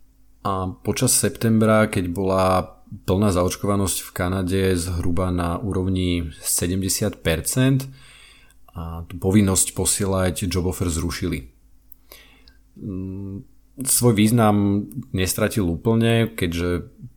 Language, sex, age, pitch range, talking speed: Slovak, male, 40-59, 85-105 Hz, 85 wpm